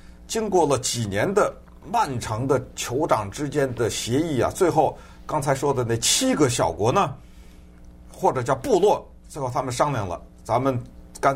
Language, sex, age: Chinese, male, 50-69